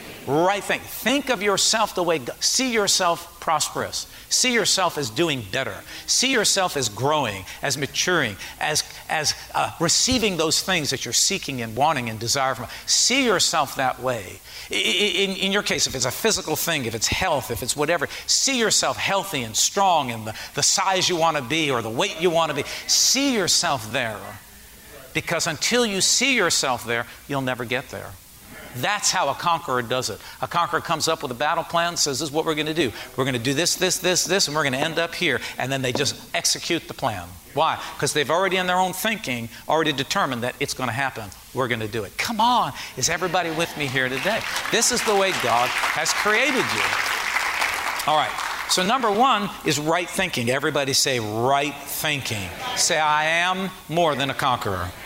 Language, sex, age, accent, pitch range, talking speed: English, male, 50-69, American, 130-180 Hz, 210 wpm